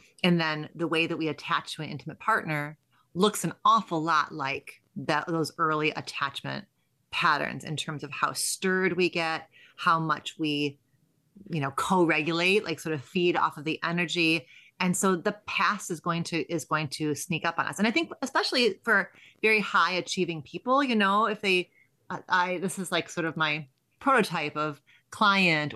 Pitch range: 155-190 Hz